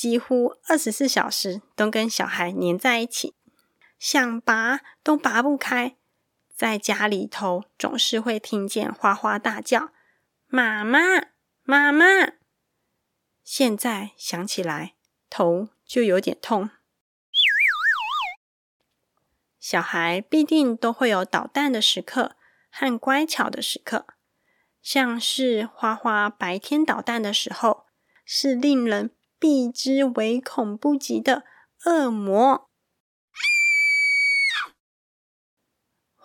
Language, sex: Chinese, female